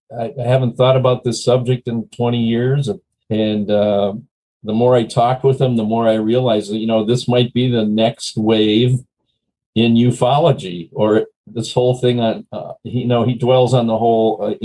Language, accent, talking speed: English, American, 195 wpm